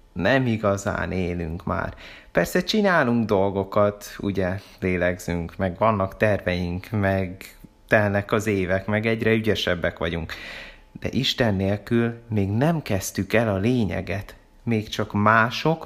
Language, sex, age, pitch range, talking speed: Hungarian, male, 30-49, 95-115 Hz, 120 wpm